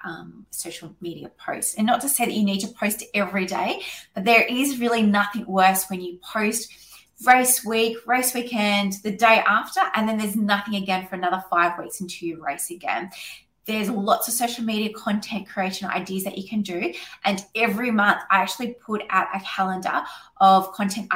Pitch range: 185-220 Hz